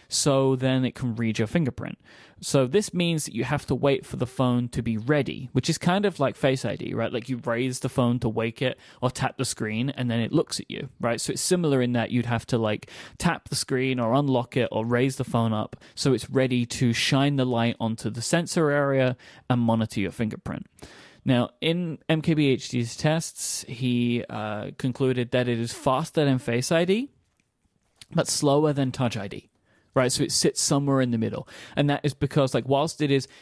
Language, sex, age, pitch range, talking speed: English, male, 20-39, 120-145 Hz, 210 wpm